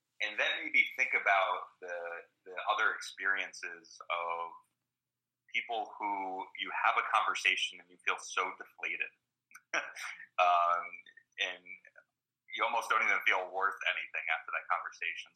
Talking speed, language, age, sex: 130 wpm, English, 30-49, male